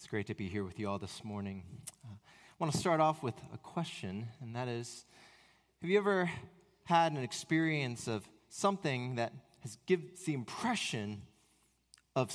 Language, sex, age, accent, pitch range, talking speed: English, male, 30-49, American, 115-160 Hz, 175 wpm